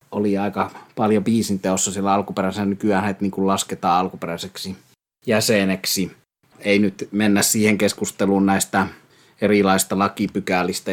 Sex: male